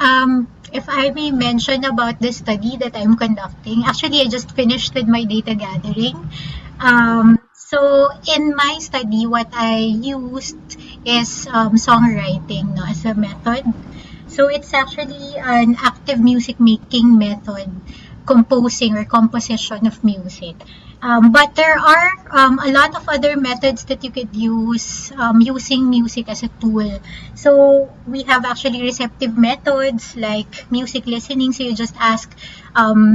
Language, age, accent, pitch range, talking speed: English, 20-39, Filipino, 225-265 Hz, 145 wpm